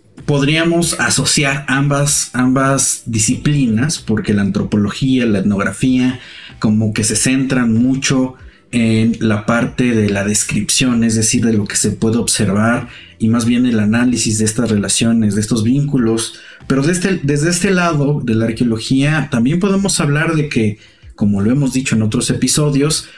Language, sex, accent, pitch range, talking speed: Spanish, male, Mexican, 110-140 Hz, 155 wpm